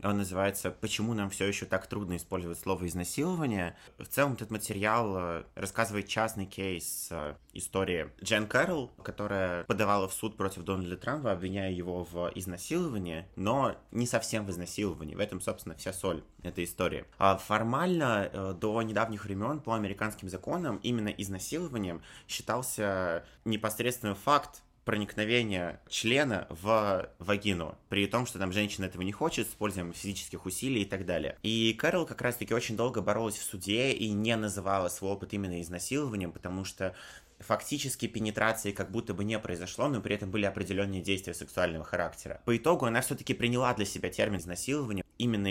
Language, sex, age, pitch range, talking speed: Russian, male, 20-39, 90-110 Hz, 155 wpm